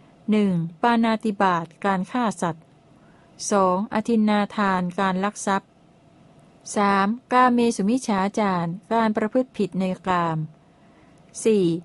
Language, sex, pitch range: Thai, female, 170-220 Hz